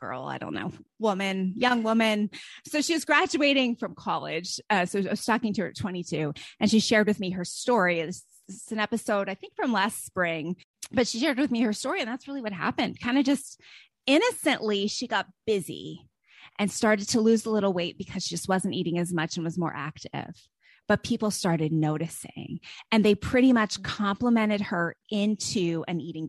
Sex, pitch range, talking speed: female, 185-255 Hz, 200 wpm